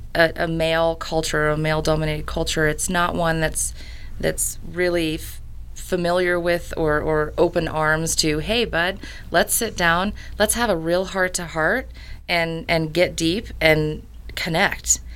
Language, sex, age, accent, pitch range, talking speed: English, female, 30-49, American, 145-165 Hz, 155 wpm